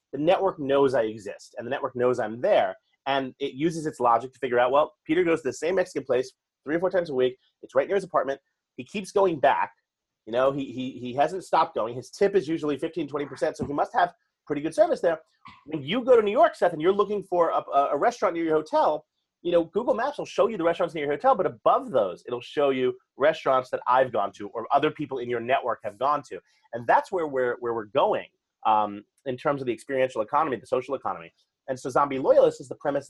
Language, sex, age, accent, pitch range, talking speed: English, male, 30-49, American, 130-195 Hz, 250 wpm